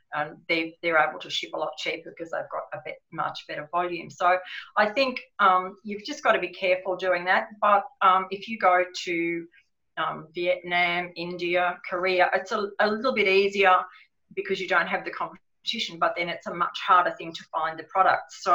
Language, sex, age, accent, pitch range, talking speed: English, female, 40-59, Australian, 175-200 Hz, 205 wpm